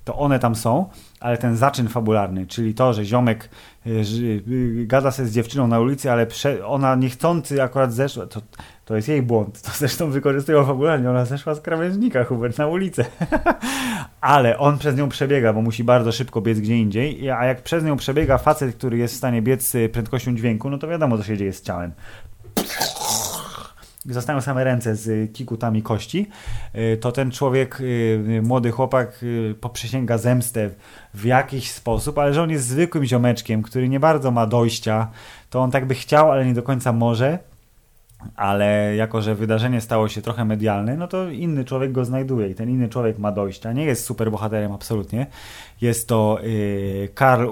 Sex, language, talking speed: male, Polish, 175 wpm